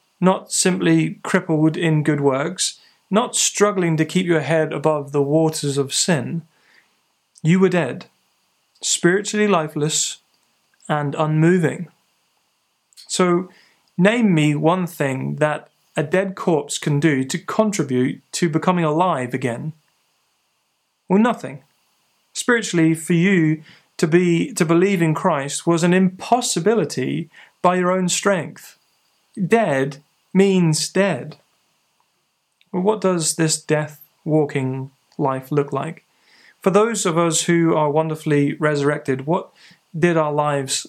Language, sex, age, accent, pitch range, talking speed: English, male, 30-49, British, 145-180 Hz, 120 wpm